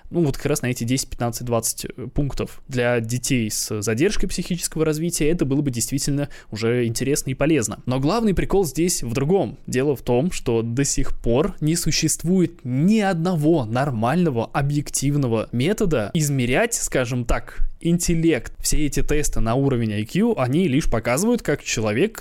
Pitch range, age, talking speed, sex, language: 120-180 Hz, 20-39, 160 wpm, male, Russian